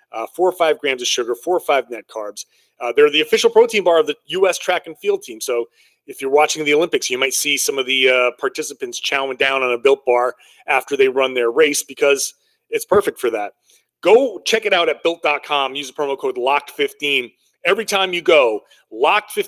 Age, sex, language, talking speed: 30-49, male, English, 220 wpm